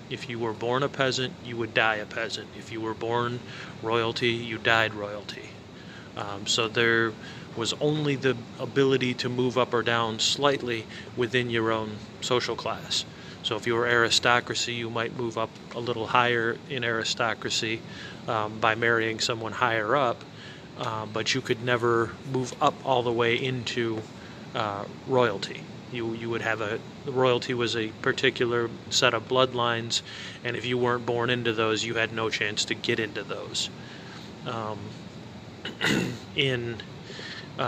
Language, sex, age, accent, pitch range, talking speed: English, male, 30-49, American, 110-125 Hz, 160 wpm